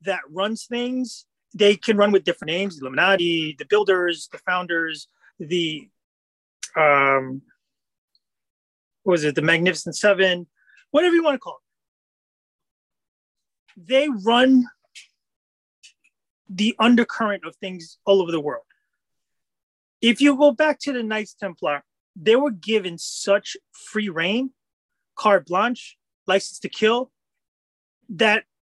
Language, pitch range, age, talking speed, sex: English, 175-240 Hz, 30-49, 125 wpm, male